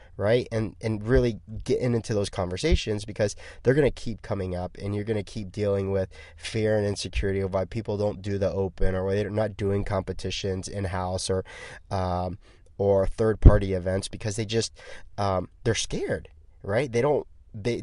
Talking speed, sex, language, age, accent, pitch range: 180 wpm, male, English, 20-39, American, 95-110 Hz